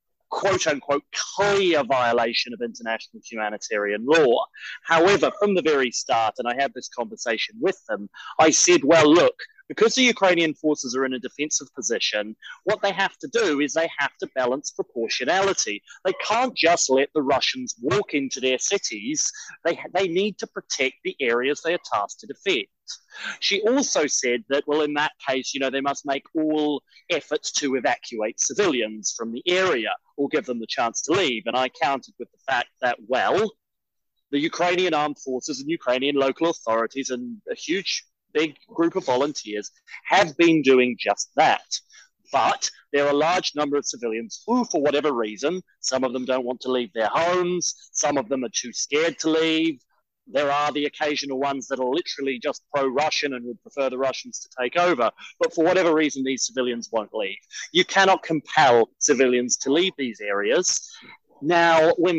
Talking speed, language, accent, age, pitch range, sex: 180 wpm, English, British, 30-49, 130-180 Hz, male